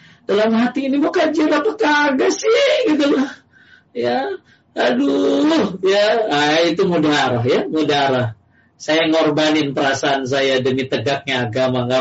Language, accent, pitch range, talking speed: Indonesian, native, 150-210 Hz, 135 wpm